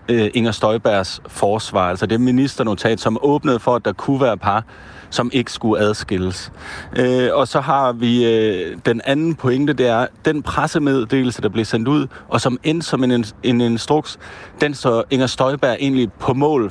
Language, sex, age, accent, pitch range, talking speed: Danish, male, 30-49, native, 115-145 Hz, 180 wpm